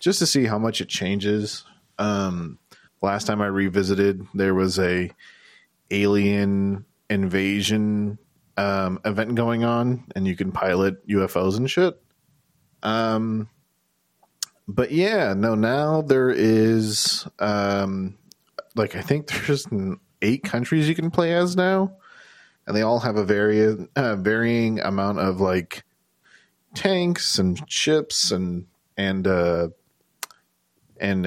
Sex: male